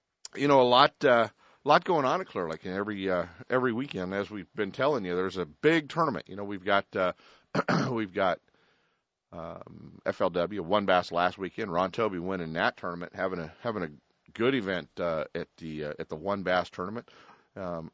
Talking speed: 195 wpm